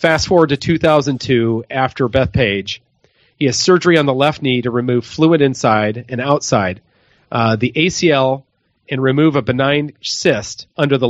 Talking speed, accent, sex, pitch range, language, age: 160 wpm, American, male, 120-150 Hz, English, 40-59